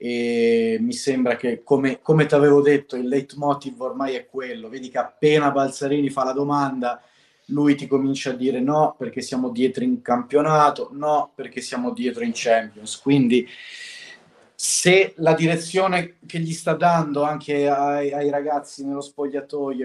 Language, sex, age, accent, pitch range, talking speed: Italian, male, 30-49, native, 125-175 Hz, 155 wpm